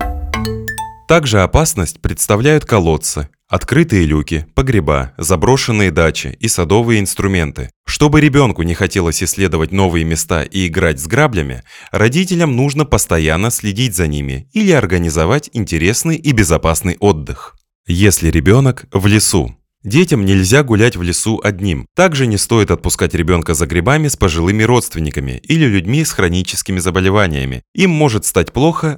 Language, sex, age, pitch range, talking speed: Russian, male, 20-39, 85-125 Hz, 135 wpm